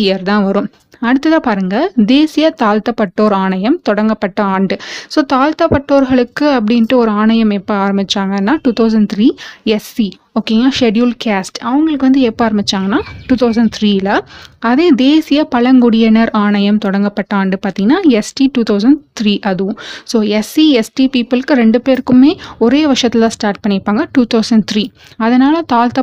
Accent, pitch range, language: native, 210-260 Hz, Tamil